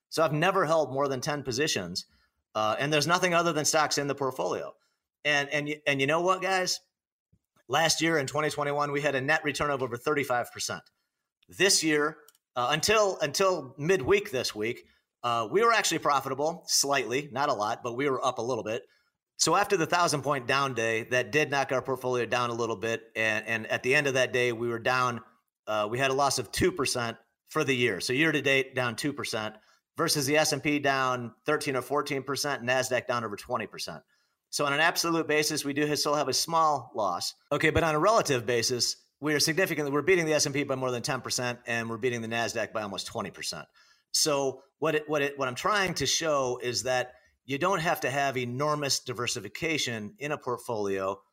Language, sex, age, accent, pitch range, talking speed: English, male, 40-59, American, 125-155 Hz, 215 wpm